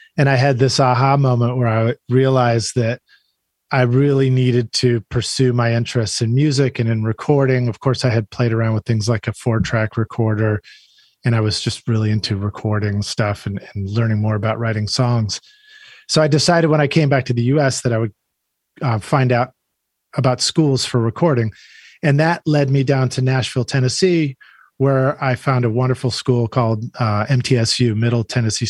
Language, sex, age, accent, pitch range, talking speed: English, male, 30-49, American, 115-140 Hz, 185 wpm